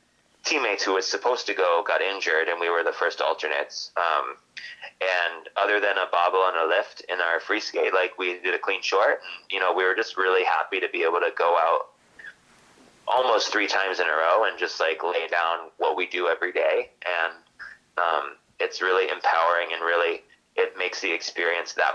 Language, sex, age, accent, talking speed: English, male, 20-39, American, 200 wpm